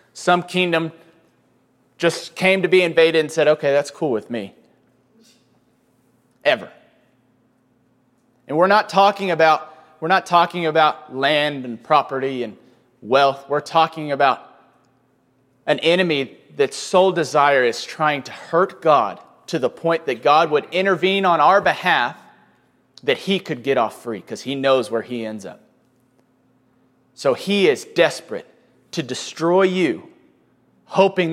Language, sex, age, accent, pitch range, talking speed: English, male, 30-49, American, 130-185 Hz, 140 wpm